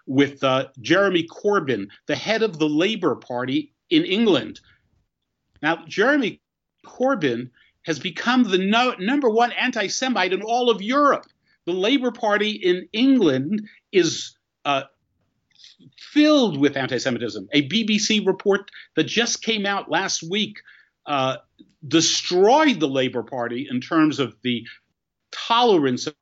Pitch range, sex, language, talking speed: 150-240 Hz, male, English, 125 wpm